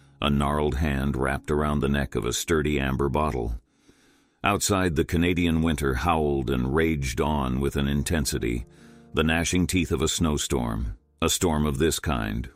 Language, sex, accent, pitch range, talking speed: English, male, American, 70-80 Hz, 160 wpm